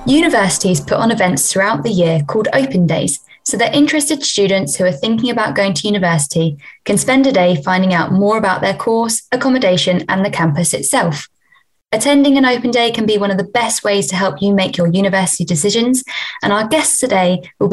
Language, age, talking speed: English, 20-39, 200 wpm